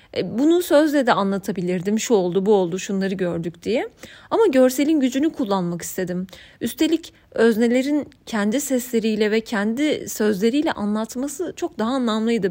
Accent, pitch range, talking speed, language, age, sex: native, 205-275 Hz, 130 wpm, Turkish, 30-49, female